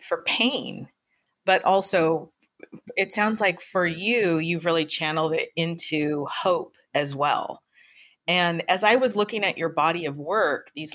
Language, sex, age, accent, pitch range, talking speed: English, female, 30-49, American, 155-190 Hz, 155 wpm